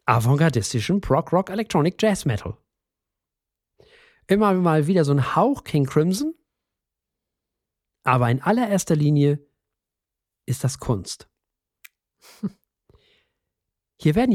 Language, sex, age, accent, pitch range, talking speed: German, male, 40-59, German, 120-175 Hz, 80 wpm